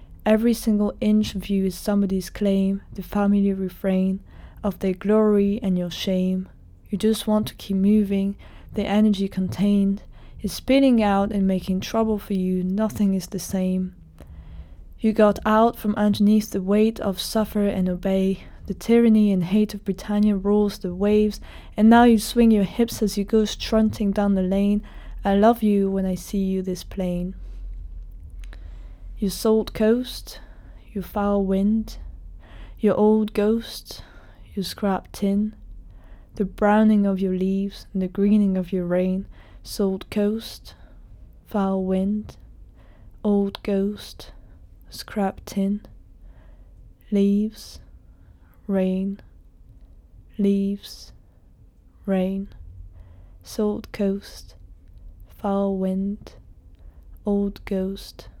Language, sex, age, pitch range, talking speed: English, female, 20-39, 185-210 Hz, 125 wpm